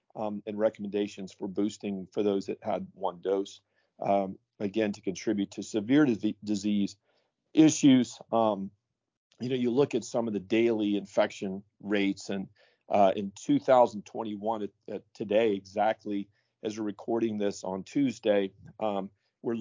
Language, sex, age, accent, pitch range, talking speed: English, male, 50-69, American, 100-115 Hz, 140 wpm